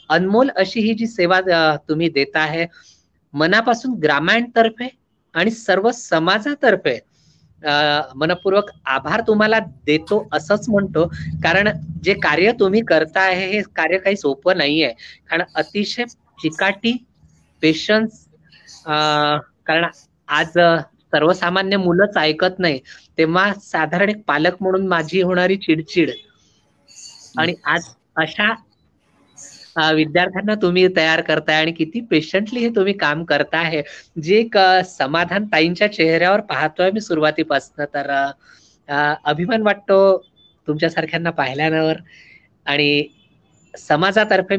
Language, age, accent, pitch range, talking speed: Marathi, 20-39, native, 155-200 Hz, 75 wpm